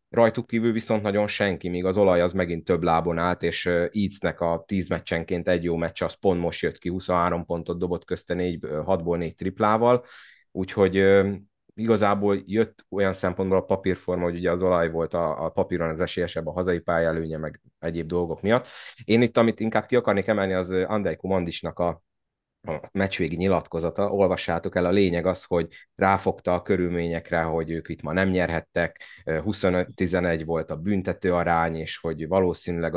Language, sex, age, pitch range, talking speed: Hungarian, male, 30-49, 85-95 Hz, 170 wpm